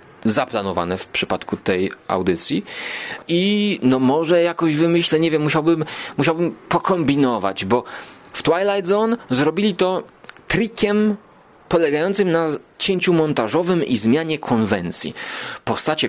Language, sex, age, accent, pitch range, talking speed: Polish, male, 30-49, native, 105-155 Hz, 110 wpm